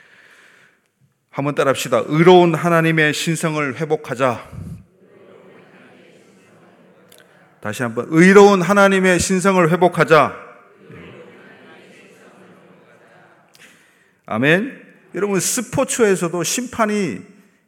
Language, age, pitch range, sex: Korean, 30-49, 155-205 Hz, male